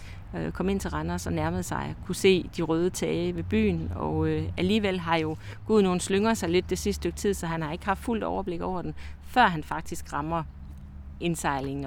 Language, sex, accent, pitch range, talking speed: Danish, female, native, 150-185 Hz, 205 wpm